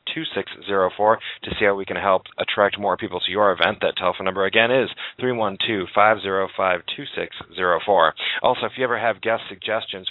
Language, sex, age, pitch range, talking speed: English, male, 40-59, 95-115 Hz, 170 wpm